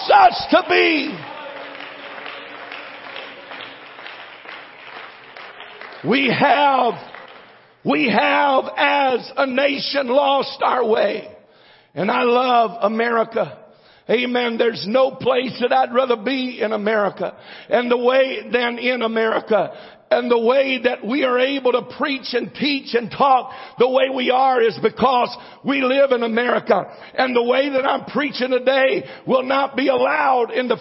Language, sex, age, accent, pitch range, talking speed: English, male, 60-79, American, 245-300 Hz, 135 wpm